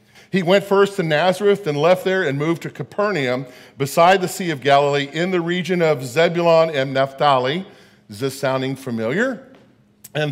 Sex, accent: male, American